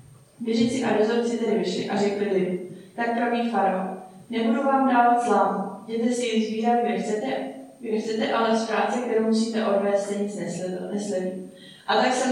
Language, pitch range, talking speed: Czech, 200-235 Hz, 145 wpm